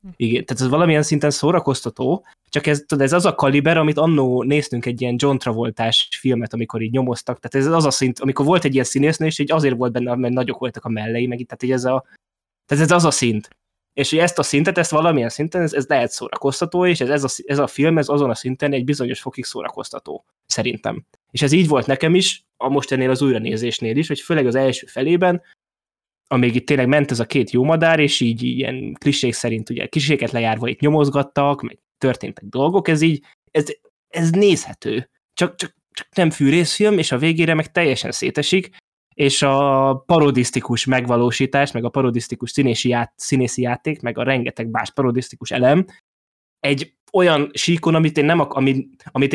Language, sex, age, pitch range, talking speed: Hungarian, male, 20-39, 125-150 Hz, 200 wpm